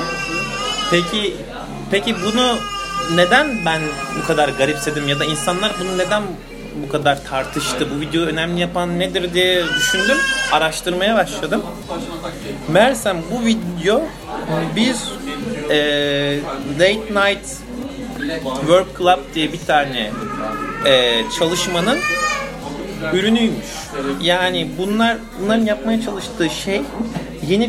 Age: 40-59